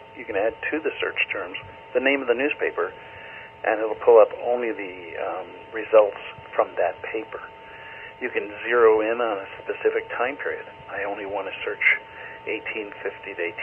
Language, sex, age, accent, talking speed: English, male, 50-69, American, 170 wpm